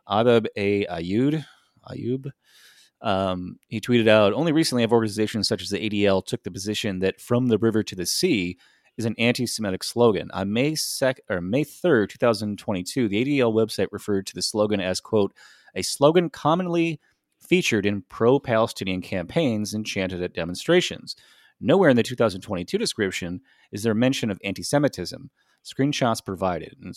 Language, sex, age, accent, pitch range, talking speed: English, male, 30-49, American, 95-120 Hz, 160 wpm